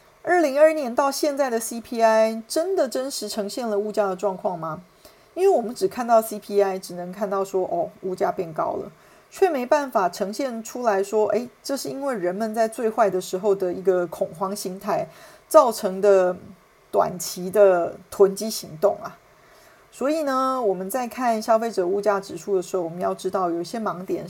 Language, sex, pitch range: Chinese, female, 190-235 Hz